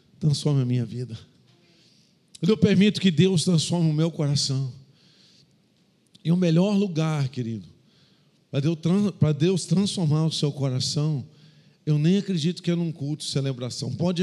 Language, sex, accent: Portuguese, male, Brazilian